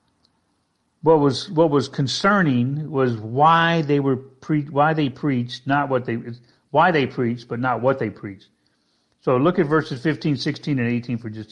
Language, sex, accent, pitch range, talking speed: English, male, American, 115-145 Hz, 175 wpm